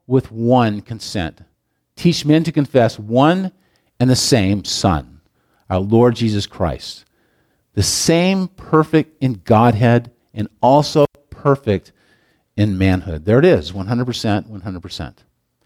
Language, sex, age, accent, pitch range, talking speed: English, male, 50-69, American, 125-180 Hz, 125 wpm